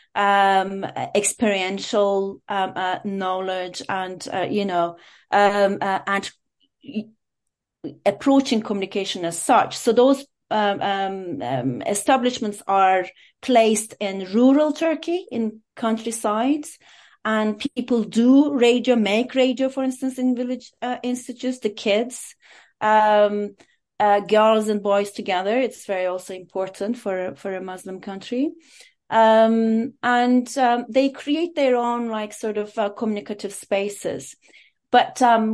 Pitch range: 195-245 Hz